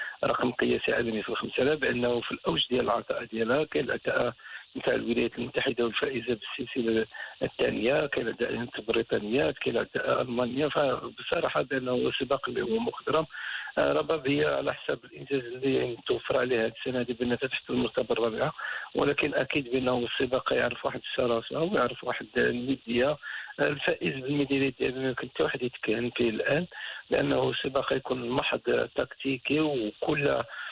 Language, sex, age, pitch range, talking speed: Arabic, male, 50-69, 120-135 Hz, 135 wpm